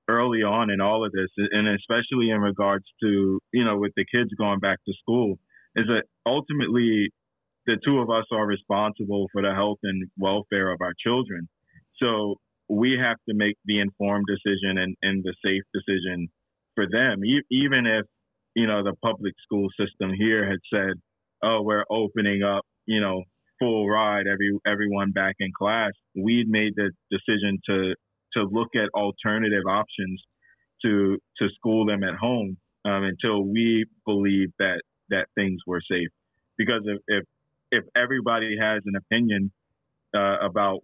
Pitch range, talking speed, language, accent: 95-110 Hz, 165 wpm, English, American